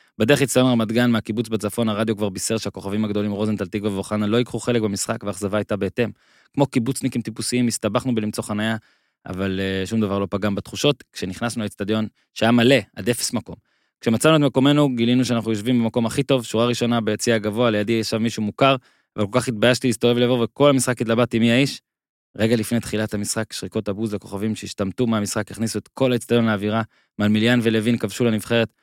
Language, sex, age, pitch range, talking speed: Hebrew, male, 20-39, 105-120 Hz, 115 wpm